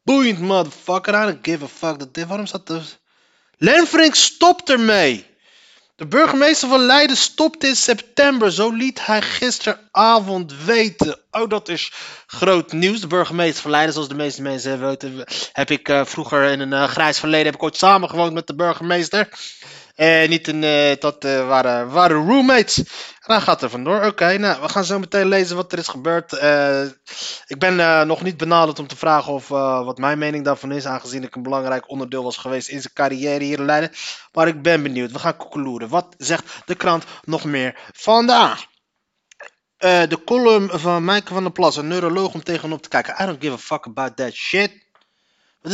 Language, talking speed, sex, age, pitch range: Dutch, 200 wpm, male, 20-39, 145-200 Hz